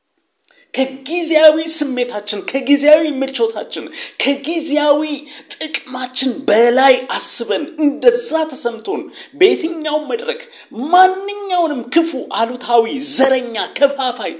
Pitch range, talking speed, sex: 235-340 Hz, 70 wpm, male